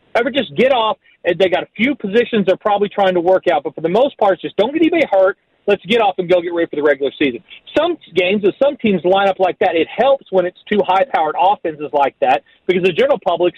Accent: American